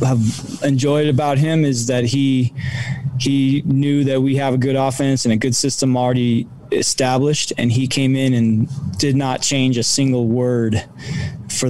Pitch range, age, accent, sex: 115-135 Hz, 20-39, American, male